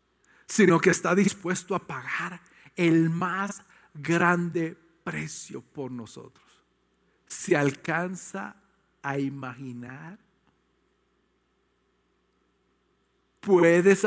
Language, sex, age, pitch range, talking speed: English, male, 50-69, 155-195 Hz, 75 wpm